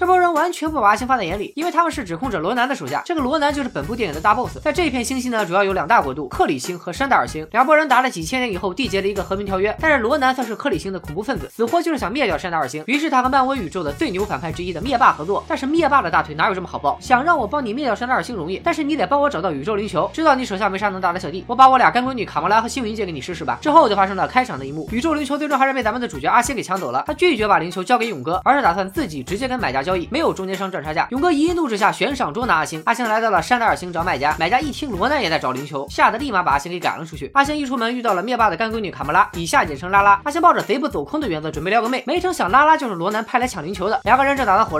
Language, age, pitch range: Chinese, 20-39, 190-290 Hz